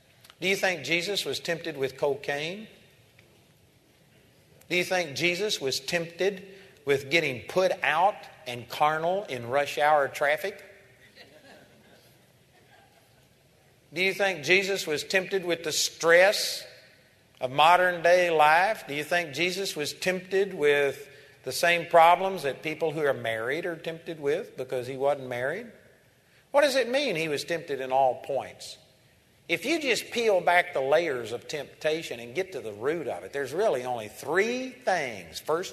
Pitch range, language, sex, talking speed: 130-185 Hz, English, male, 155 wpm